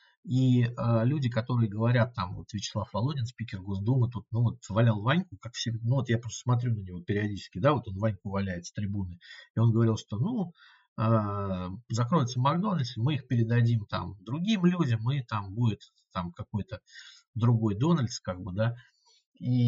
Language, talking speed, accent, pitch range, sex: Russian, 175 wpm, native, 100-120 Hz, male